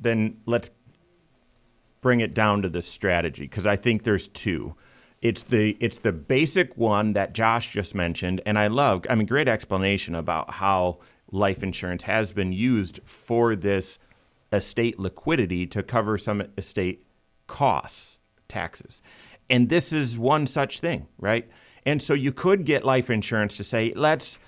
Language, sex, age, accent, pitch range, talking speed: English, male, 30-49, American, 90-115 Hz, 155 wpm